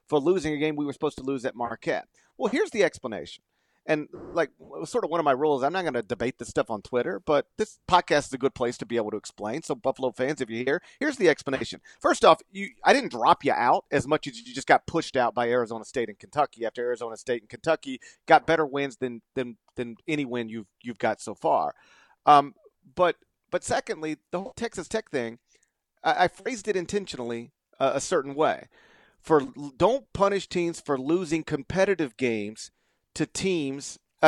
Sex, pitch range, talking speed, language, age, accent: male, 130-190 Hz, 215 wpm, English, 40-59, American